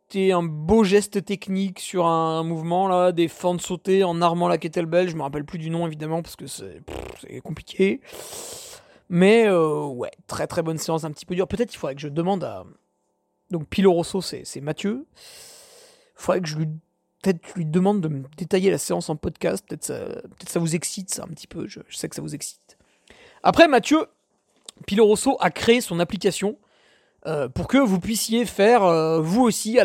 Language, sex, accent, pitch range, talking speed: French, male, French, 170-220 Hz, 205 wpm